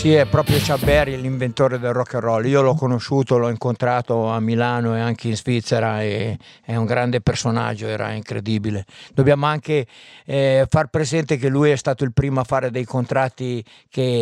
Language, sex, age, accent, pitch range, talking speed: Italian, male, 50-69, native, 125-155 Hz, 180 wpm